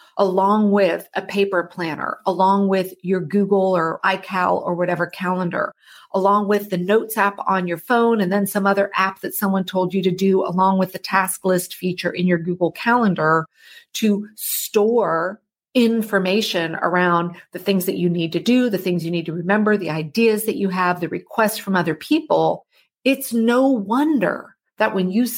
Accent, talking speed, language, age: American, 180 wpm, English, 40-59